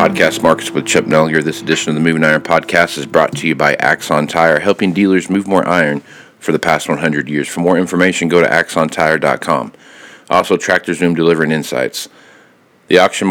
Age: 40-59